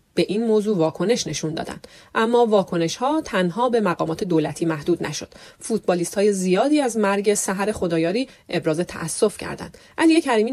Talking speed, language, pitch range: 155 wpm, Persian, 175-235 Hz